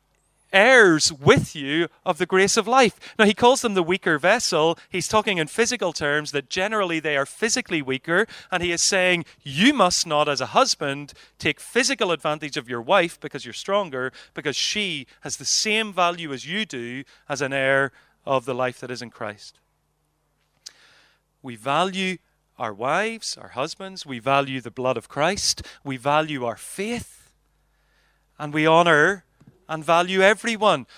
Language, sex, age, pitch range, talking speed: English, male, 30-49, 145-200 Hz, 165 wpm